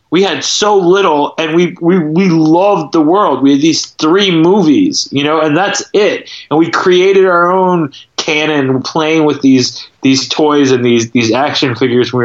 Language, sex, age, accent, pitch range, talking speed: English, male, 30-49, American, 140-190 Hz, 185 wpm